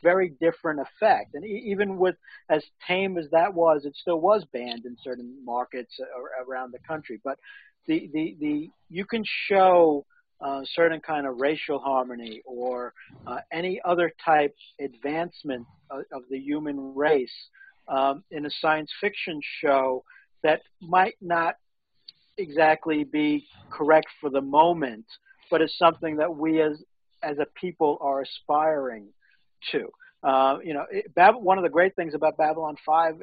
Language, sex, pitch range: English, male, 140-175 Hz